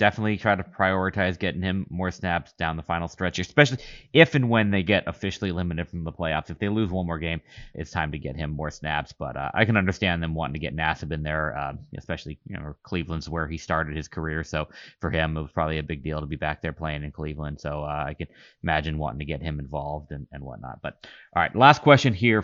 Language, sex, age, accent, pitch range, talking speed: English, male, 30-49, American, 75-100 Hz, 250 wpm